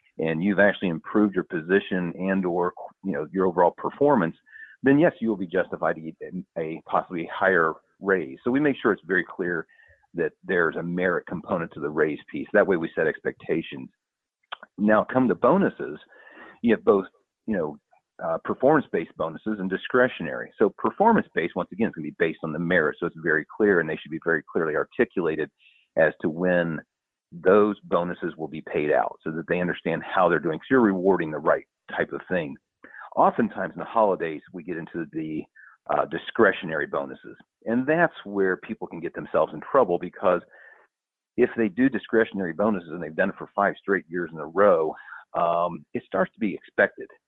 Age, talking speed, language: 40-59, 190 wpm, English